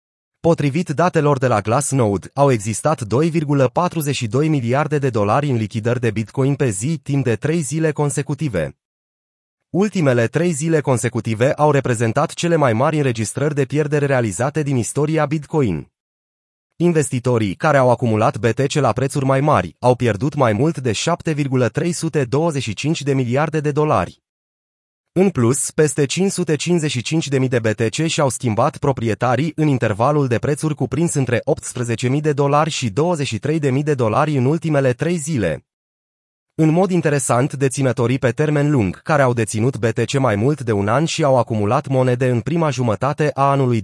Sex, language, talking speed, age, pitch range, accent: male, Romanian, 150 wpm, 30-49, 120-155 Hz, native